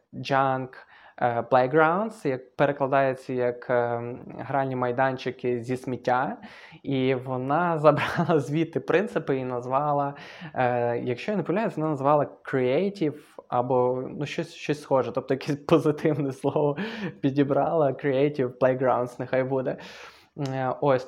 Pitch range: 130-155 Hz